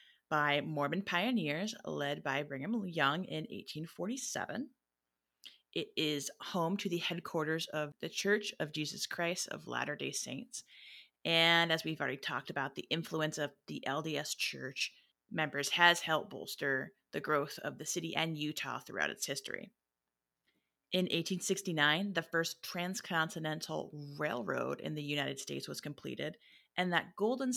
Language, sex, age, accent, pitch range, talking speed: English, female, 30-49, American, 145-175 Hz, 145 wpm